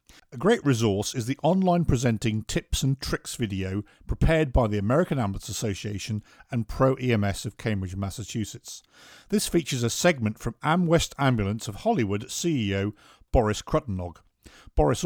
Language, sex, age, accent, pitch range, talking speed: English, male, 50-69, British, 105-135 Hz, 145 wpm